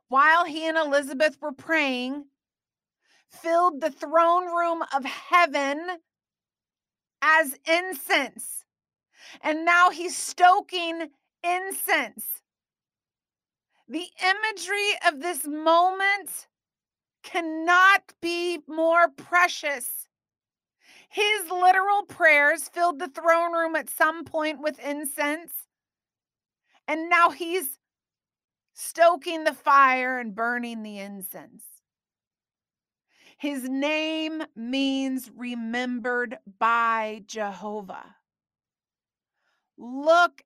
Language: English